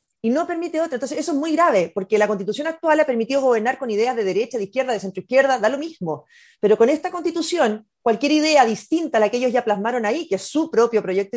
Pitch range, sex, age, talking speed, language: 215-290 Hz, female, 30-49, 245 wpm, Spanish